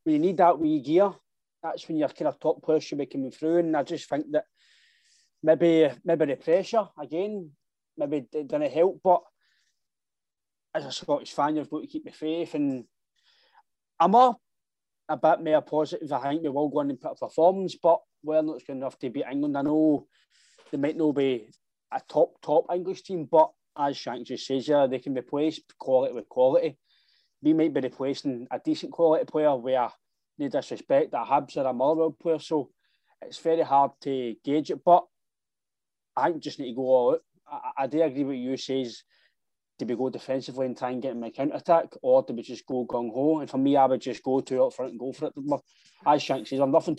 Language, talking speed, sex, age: English, 220 wpm, male, 20-39